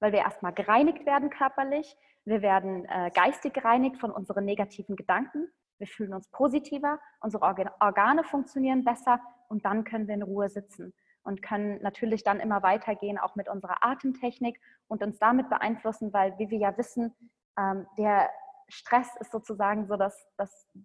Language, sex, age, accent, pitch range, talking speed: German, female, 20-39, German, 205-240 Hz, 165 wpm